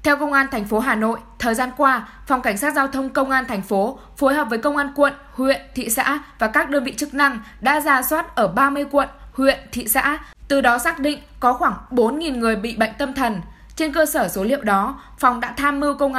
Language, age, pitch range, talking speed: Vietnamese, 10-29, 225-285 Hz, 245 wpm